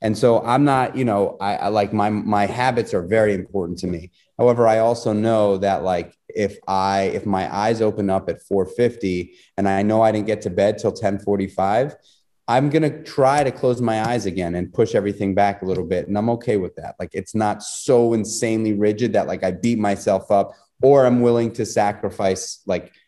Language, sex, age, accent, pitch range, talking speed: English, male, 30-49, American, 95-115 Hz, 210 wpm